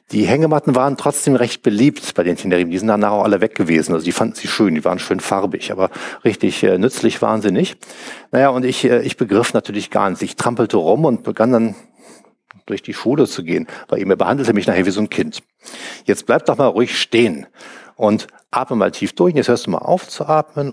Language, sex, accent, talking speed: German, male, German, 230 wpm